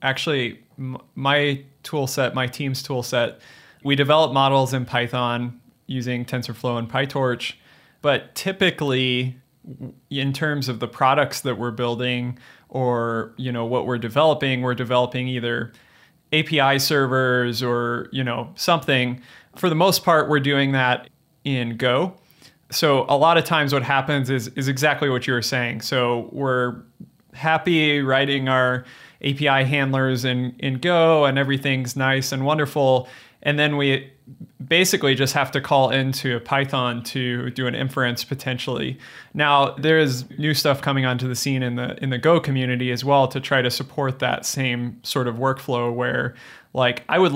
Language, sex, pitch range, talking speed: English, male, 125-145 Hz, 155 wpm